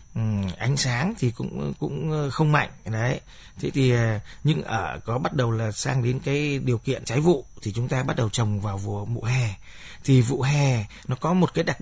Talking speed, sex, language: 210 wpm, male, Vietnamese